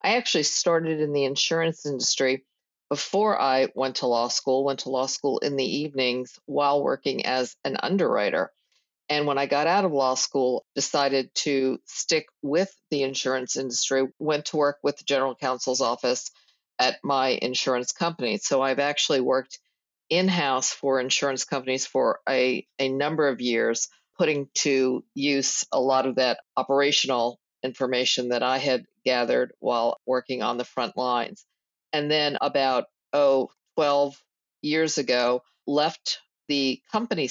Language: English